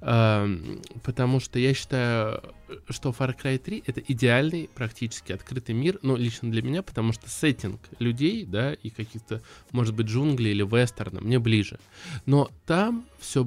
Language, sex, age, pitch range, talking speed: Russian, male, 20-39, 110-135 Hz, 160 wpm